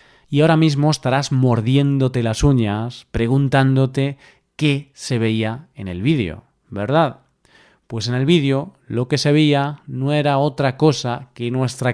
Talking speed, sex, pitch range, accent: 145 wpm, male, 120-145 Hz, Spanish